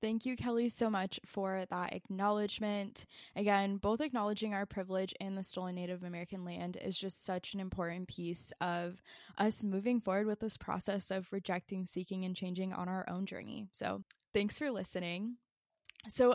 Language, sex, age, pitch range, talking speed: English, female, 10-29, 185-220 Hz, 170 wpm